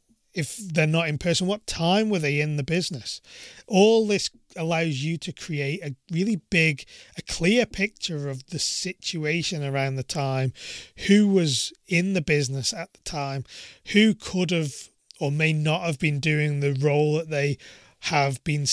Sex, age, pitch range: male, 30-49, 145-185 Hz